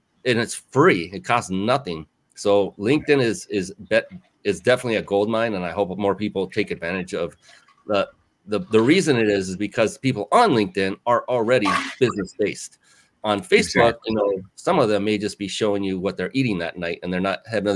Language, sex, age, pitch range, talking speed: English, male, 30-49, 95-115 Hz, 195 wpm